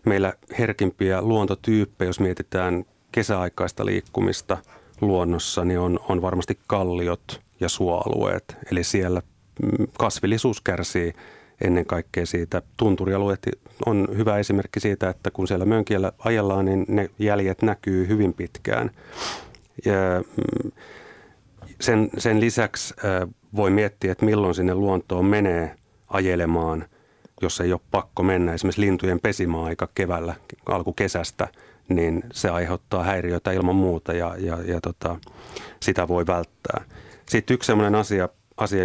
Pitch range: 90-105 Hz